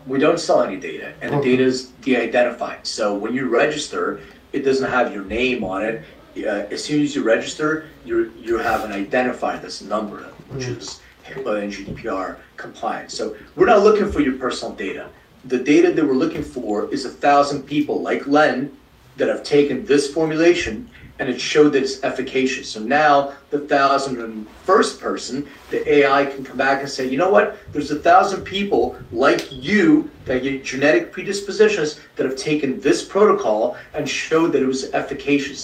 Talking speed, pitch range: 180 wpm, 130-150 Hz